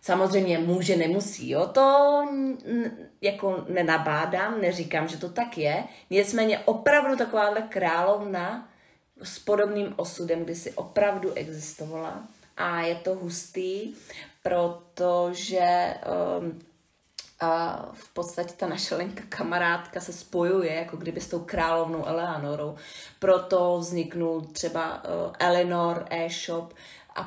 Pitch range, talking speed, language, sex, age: 170-190 Hz, 110 wpm, Czech, female, 30-49